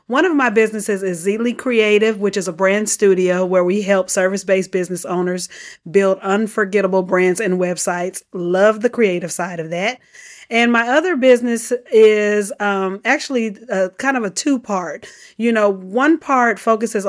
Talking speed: 160 wpm